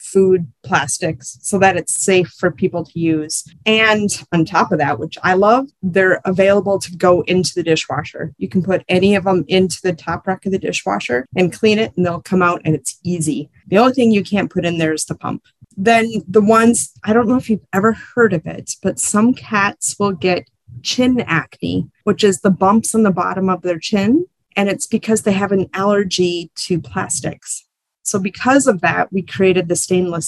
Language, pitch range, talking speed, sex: English, 165-200 Hz, 210 wpm, female